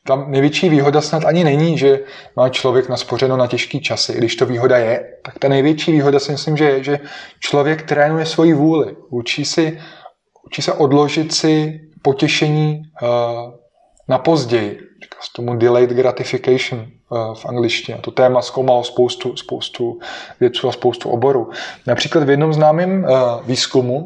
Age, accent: 20-39, native